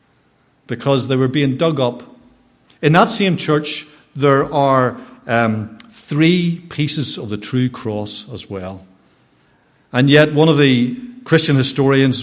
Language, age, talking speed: English, 50-69, 135 wpm